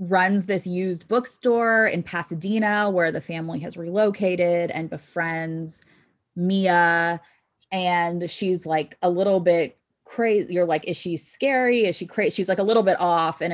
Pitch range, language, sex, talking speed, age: 160-190 Hz, English, female, 160 wpm, 20-39